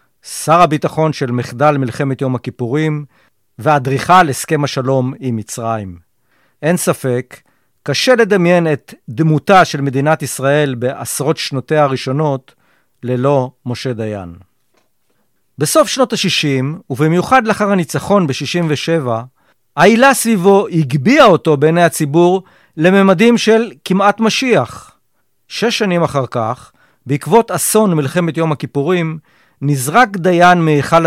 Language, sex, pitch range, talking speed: Hebrew, male, 130-175 Hz, 110 wpm